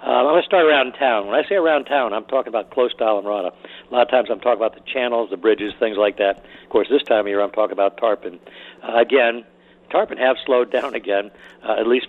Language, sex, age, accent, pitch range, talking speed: English, male, 60-79, American, 100-120 Hz, 255 wpm